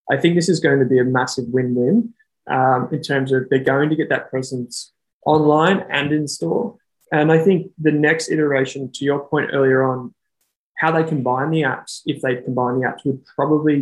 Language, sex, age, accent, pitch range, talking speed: English, male, 20-39, Australian, 130-155 Hz, 195 wpm